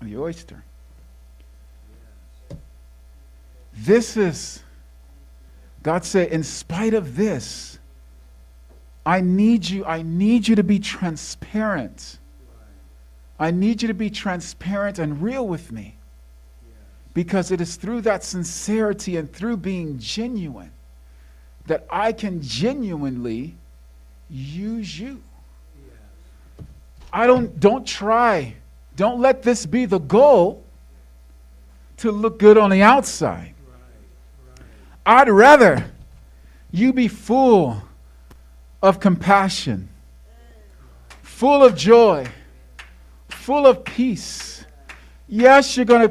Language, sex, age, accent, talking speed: English, male, 50-69, American, 100 wpm